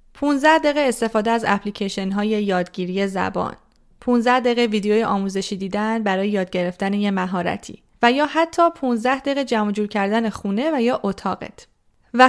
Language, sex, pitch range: Persian, female, 200-265 Hz